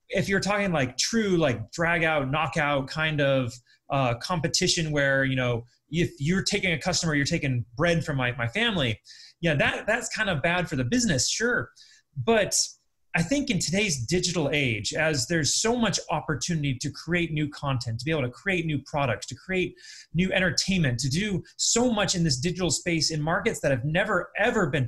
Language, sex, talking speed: English, male, 195 wpm